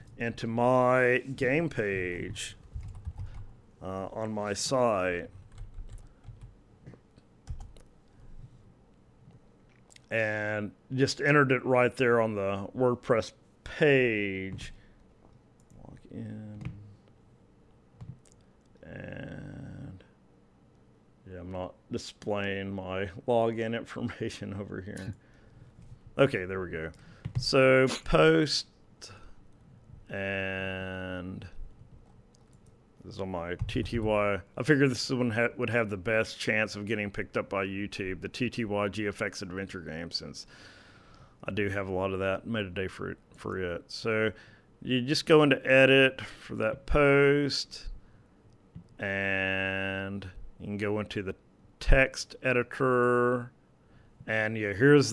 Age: 40-59